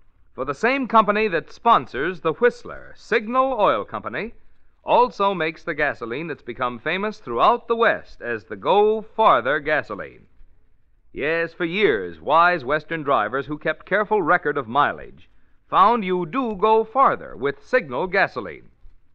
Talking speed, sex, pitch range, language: 140 wpm, male, 140-215 Hz, English